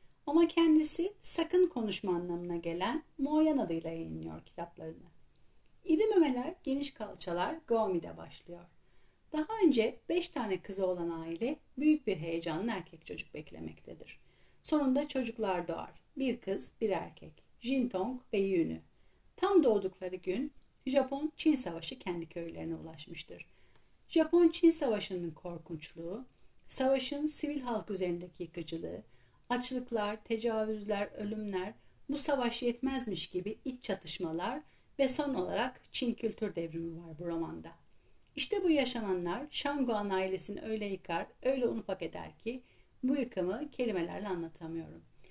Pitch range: 175-270 Hz